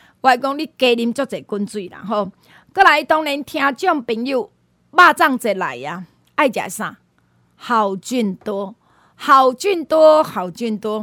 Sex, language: female, Chinese